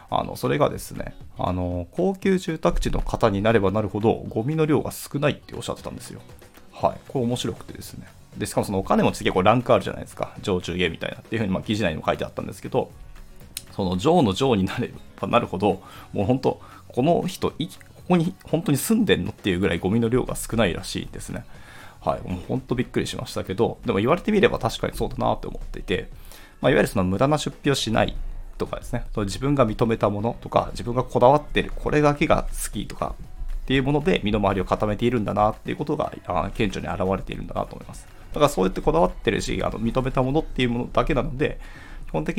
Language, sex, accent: Japanese, male, native